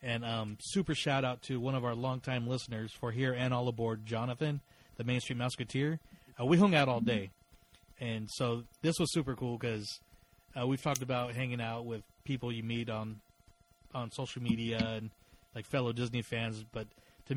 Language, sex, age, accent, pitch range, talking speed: English, male, 30-49, American, 110-130 Hz, 185 wpm